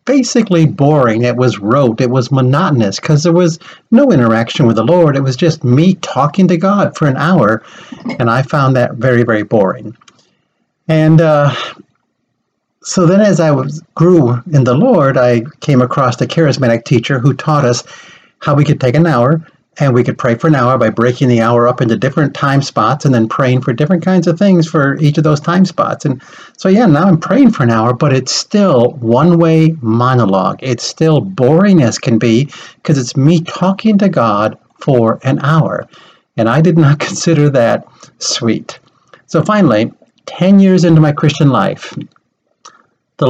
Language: English